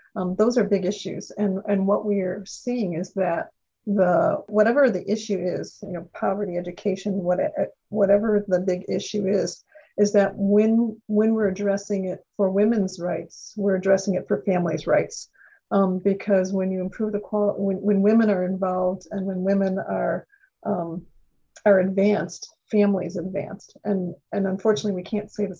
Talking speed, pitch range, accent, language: 165 wpm, 185-210 Hz, American, English